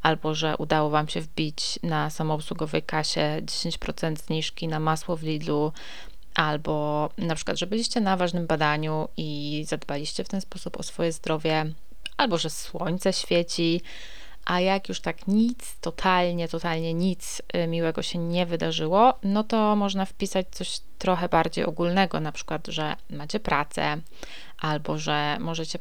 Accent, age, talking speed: native, 20-39, 145 wpm